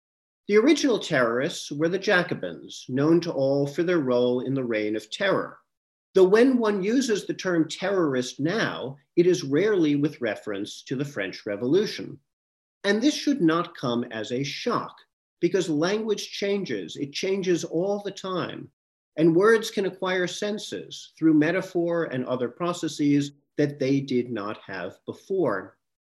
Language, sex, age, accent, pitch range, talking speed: English, male, 40-59, American, 130-185 Hz, 150 wpm